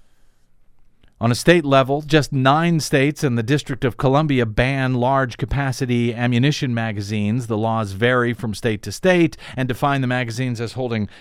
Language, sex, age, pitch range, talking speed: English, male, 40-59, 110-145 Hz, 155 wpm